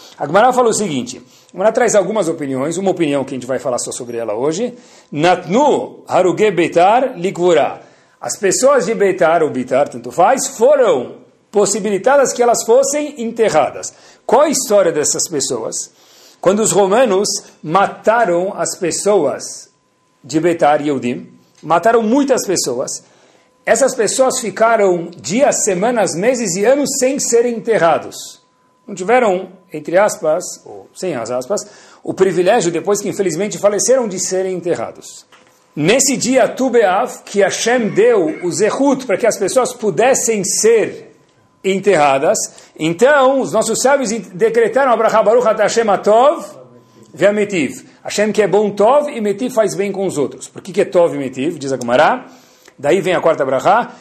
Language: Portuguese